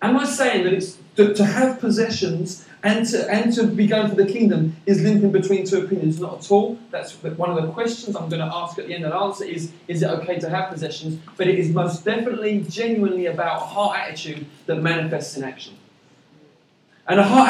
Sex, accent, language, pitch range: male, British, English, 180-225 Hz